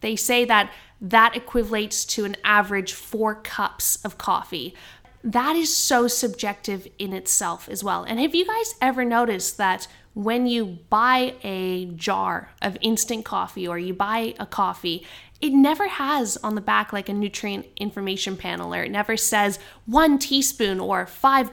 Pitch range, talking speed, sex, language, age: 200-245 Hz, 165 wpm, female, English, 20-39